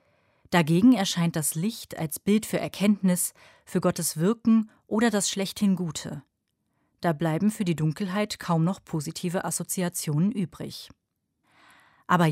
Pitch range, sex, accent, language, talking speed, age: 160-200 Hz, female, German, German, 125 wpm, 30-49